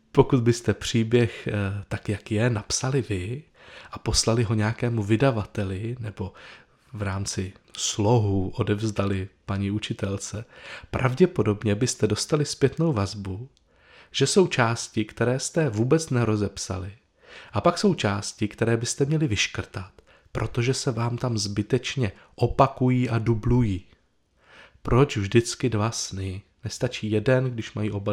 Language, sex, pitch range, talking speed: Czech, male, 105-135 Hz, 120 wpm